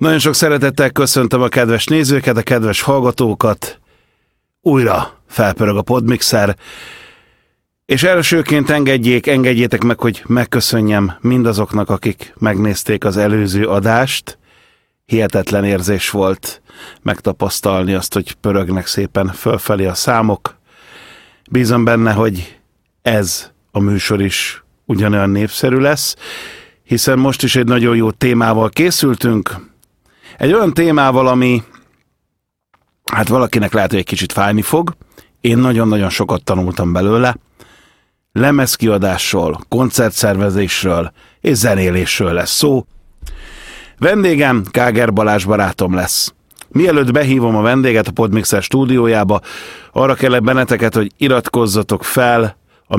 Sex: male